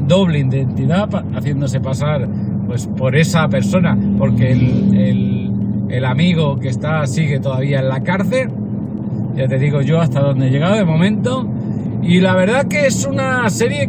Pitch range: 125-165 Hz